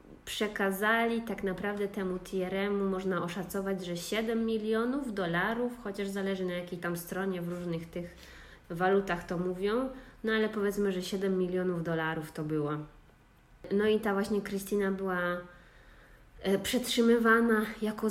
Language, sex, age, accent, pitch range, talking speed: Polish, female, 20-39, native, 175-215 Hz, 135 wpm